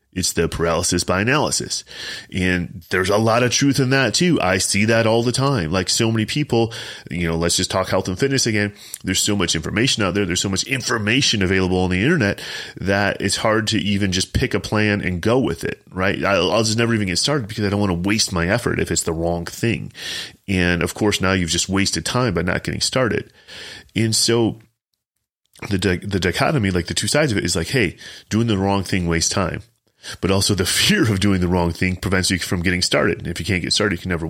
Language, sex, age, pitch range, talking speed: English, male, 30-49, 90-110 Hz, 235 wpm